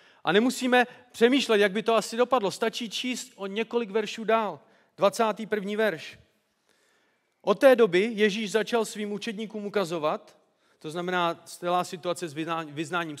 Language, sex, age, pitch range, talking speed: Czech, male, 40-59, 175-220 Hz, 140 wpm